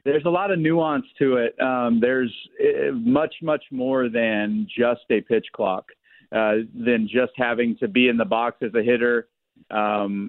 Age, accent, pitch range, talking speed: 40-59, American, 110-130 Hz, 175 wpm